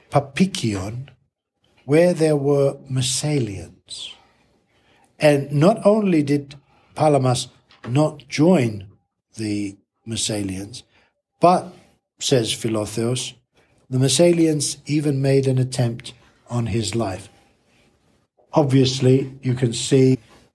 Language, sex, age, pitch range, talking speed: English, male, 60-79, 115-145 Hz, 90 wpm